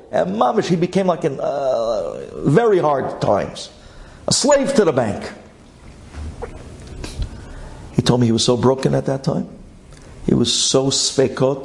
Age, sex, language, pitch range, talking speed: 50-69, male, English, 115-155 Hz, 145 wpm